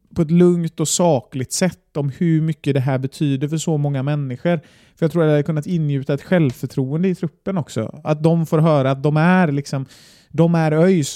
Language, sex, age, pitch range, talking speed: Swedish, male, 30-49, 140-170 Hz, 215 wpm